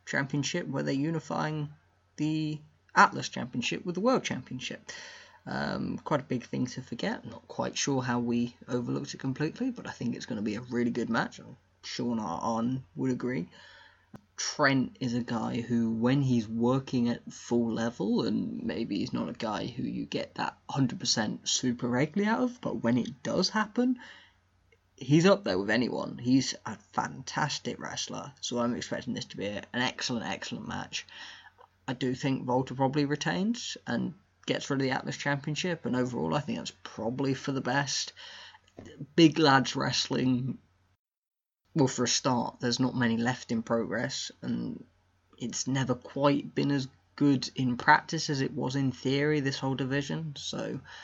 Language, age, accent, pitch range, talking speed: English, 10-29, British, 120-150 Hz, 175 wpm